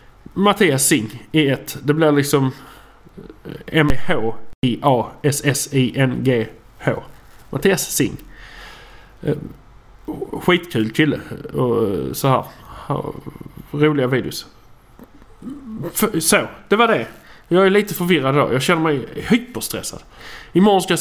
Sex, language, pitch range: male, English, 145-190 Hz